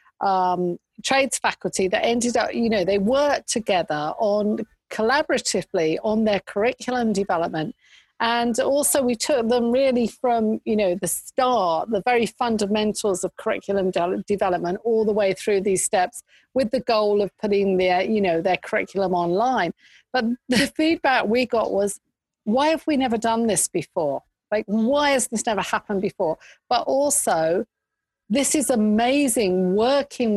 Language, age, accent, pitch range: English, 50-69, British, 195-240 Hz